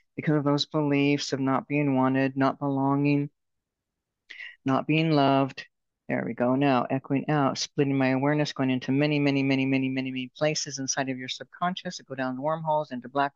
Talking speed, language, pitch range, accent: 185 wpm, English, 130-155 Hz, American